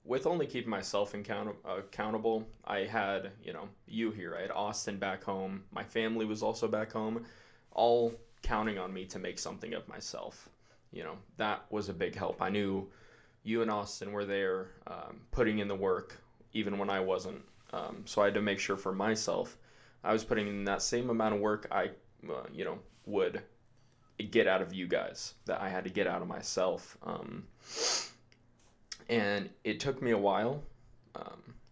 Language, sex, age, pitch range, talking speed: English, male, 20-39, 100-115 Hz, 185 wpm